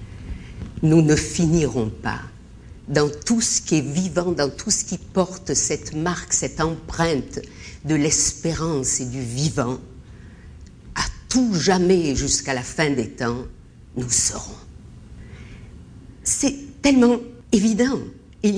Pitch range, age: 145-200 Hz, 50-69